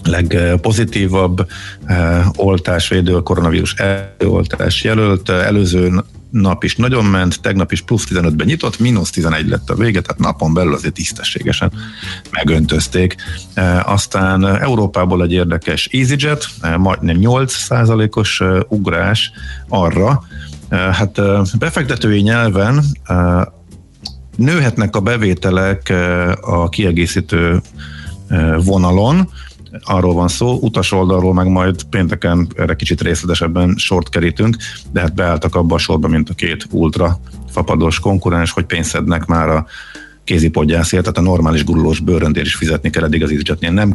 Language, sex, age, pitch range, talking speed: Hungarian, male, 50-69, 85-105 Hz, 130 wpm